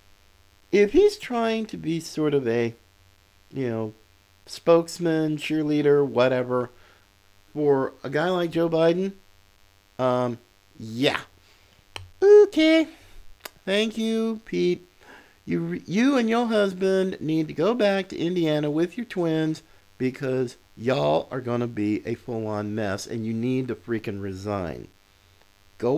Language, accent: English, American